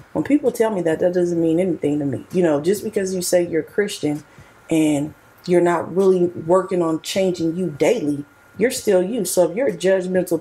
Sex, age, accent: female, 40-59, American